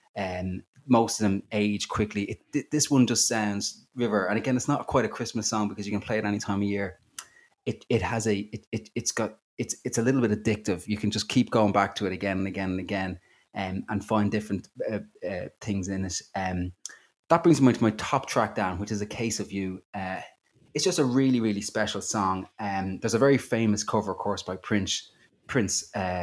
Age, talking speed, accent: 20-39, 235 wpm, Irish